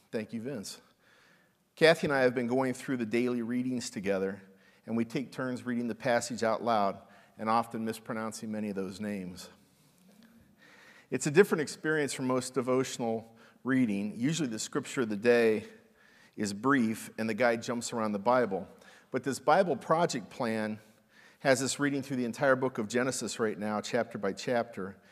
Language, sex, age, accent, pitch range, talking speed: English, male, 50-69, American, 110-130 Hz, 170 wpm